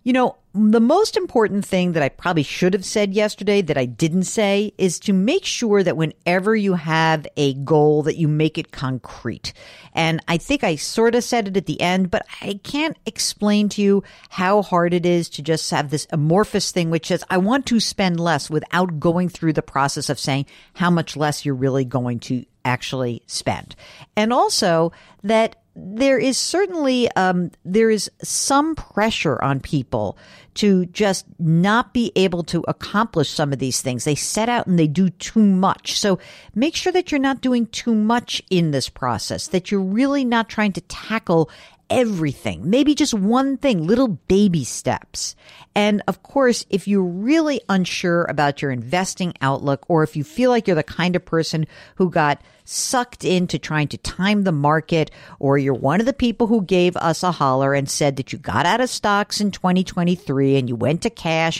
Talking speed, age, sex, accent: 195 wpm, 50-69, female, American